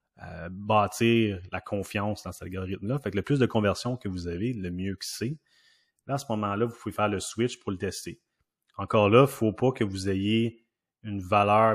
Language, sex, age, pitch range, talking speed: French, male, 30-49, 95-110 Hz, 215 wpm